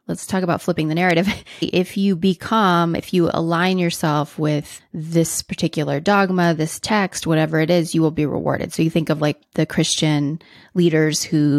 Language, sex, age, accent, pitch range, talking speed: English, female, 20-39, American, 150-185 Hz, 180 wpm